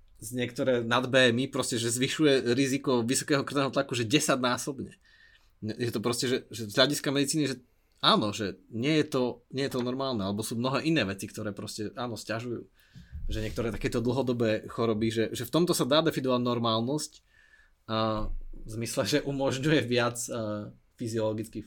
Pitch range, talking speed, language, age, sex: 110-135 Hz, 165 wpm, Slovak, 20-39, male